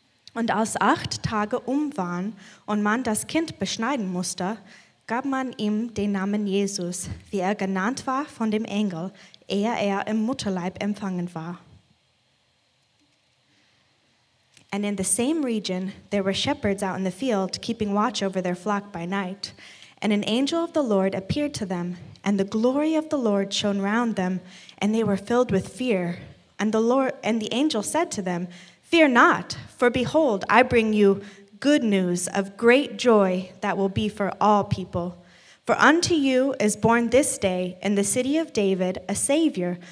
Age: 20-39